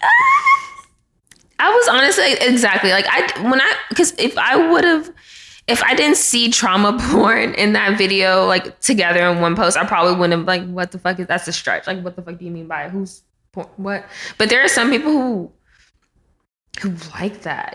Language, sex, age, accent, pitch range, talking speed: English, female, 20-39, American, 175-230 Hz, 195 wpm